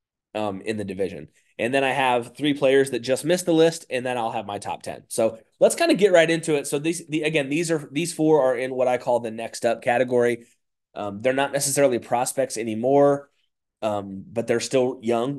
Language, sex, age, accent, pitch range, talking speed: English, male, 20-39, American, 110-140 Hz, 225 wpm